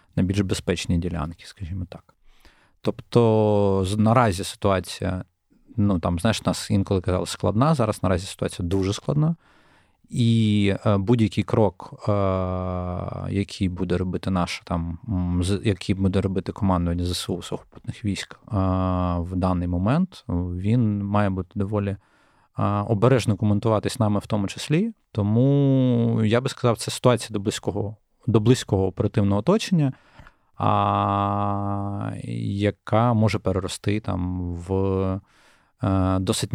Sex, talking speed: male, 120 wpm